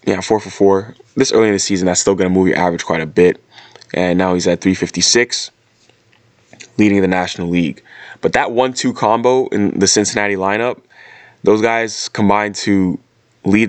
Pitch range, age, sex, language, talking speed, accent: 95-110 Hz, 20-39, male, English, 180 wpm, American